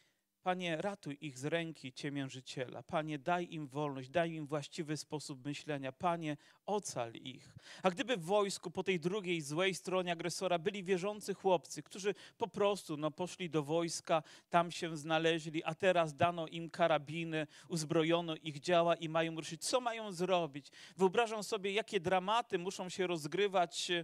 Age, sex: 40-59, male